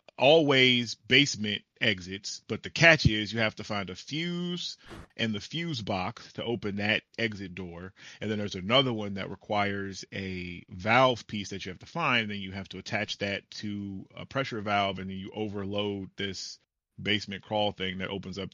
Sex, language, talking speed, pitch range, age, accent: male, English, 190 wpm, 95-115 Hz, 30-49, American